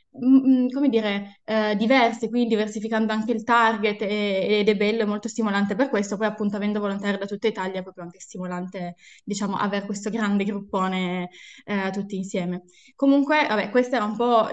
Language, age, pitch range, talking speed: Italian, 10-29, 205-235 Hz, 180 wpm